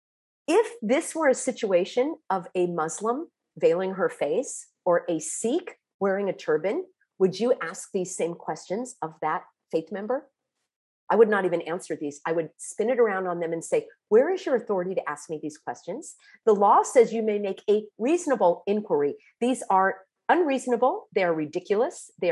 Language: English